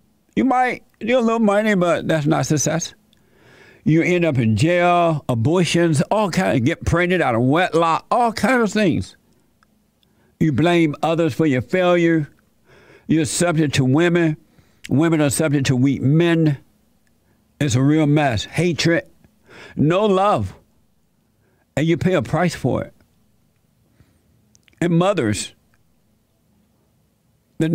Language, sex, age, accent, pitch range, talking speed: English, male, 60-79, American, 130-170 Hz, 130 wpm